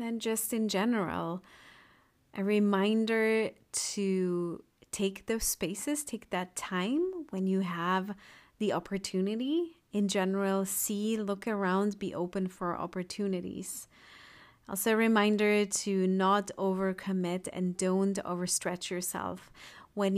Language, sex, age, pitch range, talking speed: English, female, 30-49, 185-215 Hz, 115 wpm